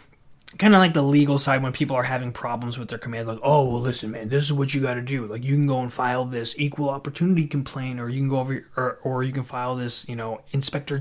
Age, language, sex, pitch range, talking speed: 20-39, English, male, 115-145 Hz, 280 wpm